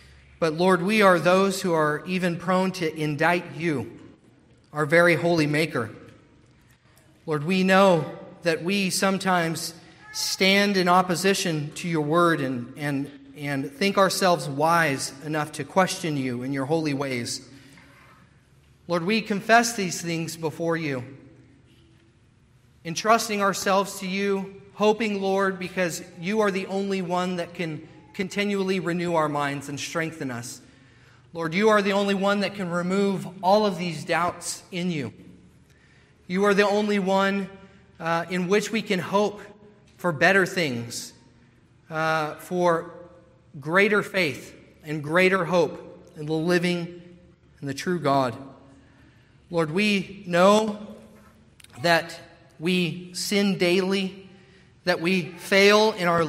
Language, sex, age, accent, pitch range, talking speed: English, male, 40-59, American, 150-190 Hz, 130 wpm